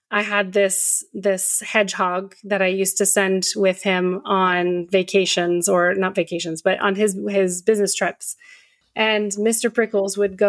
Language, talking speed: English, 160 wpm